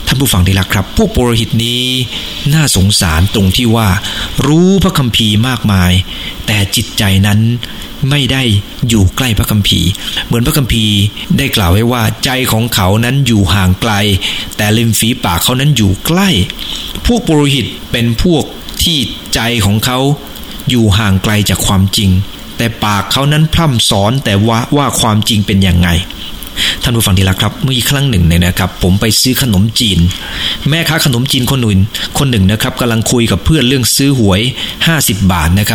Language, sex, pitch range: English, male, 100-135 Hz